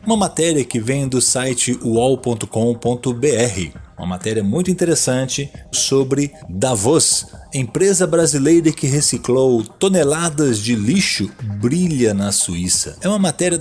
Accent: Brazilian